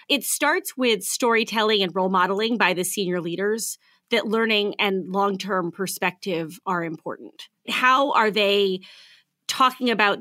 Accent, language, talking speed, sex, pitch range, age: American, English, 135 wpm, female, 195-245 Hz, 30-49